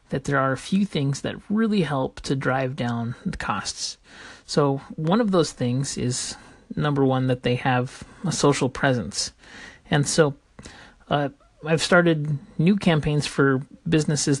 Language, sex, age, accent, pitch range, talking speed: English, male, 30-49, American, 130-160 Hz, 155 wpm